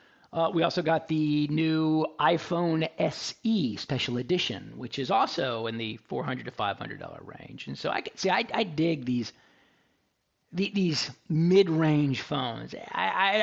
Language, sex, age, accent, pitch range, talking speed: English, male, 40-59, American, 125-170 Hz, 145 wpm